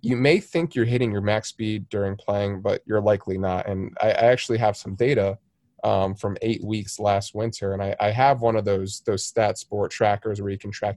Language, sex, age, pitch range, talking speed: English, male, 20-39, 100-125 Hz, 230 wpm